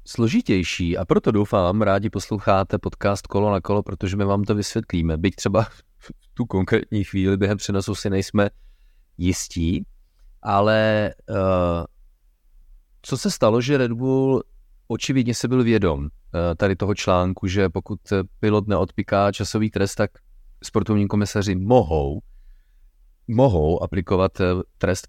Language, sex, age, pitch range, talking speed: Czech, male, 30-49, 90-110 Hz, 125 wpm